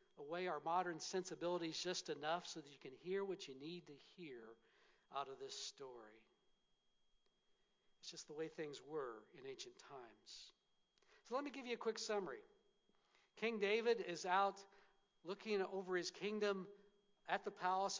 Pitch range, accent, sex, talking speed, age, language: 180-235 Hz, American, male, 160 wpm, 60-79, English